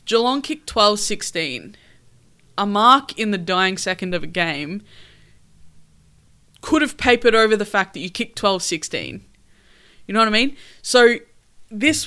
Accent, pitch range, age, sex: Australian, 175-225 Hz, 20-39, female